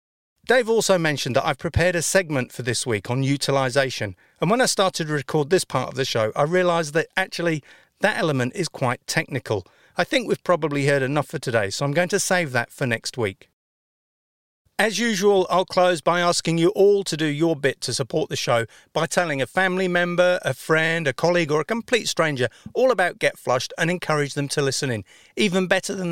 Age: 50-69